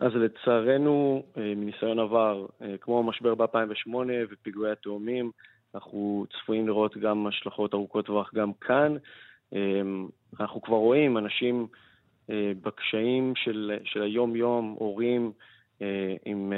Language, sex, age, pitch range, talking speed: Hebrew, male, 20-39, 105-125 Hz, 100 wpm